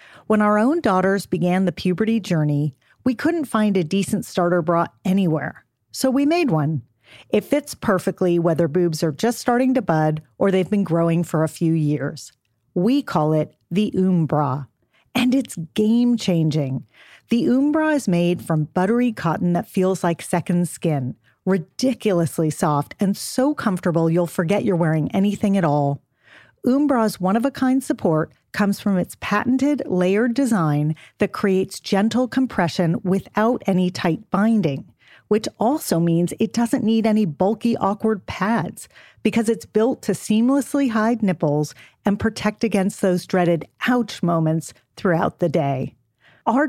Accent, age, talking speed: American, 40-59, 150 wpm